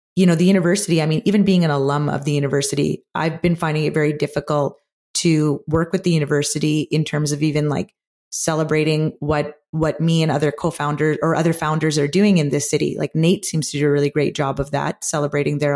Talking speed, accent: 215 wpm, American